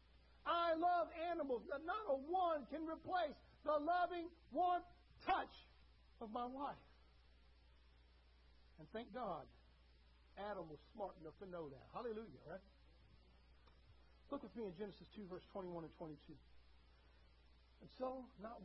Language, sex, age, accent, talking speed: English, male, 50-69, American, 130 wpm